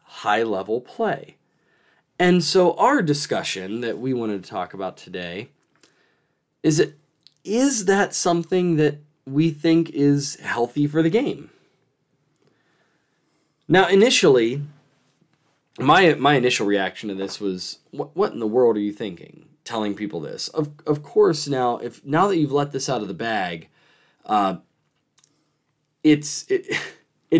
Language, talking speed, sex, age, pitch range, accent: English, 140 wpm, male, 20-39, 115-155 Hz, American